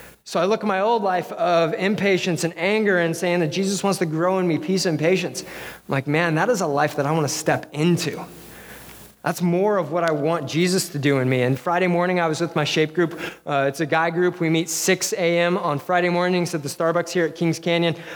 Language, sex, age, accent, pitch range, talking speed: English, male, 30-49, American, 160-190 Hz, 250 wpm